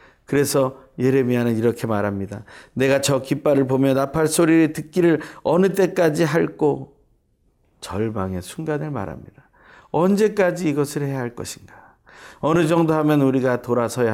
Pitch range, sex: 110-160 Hz, male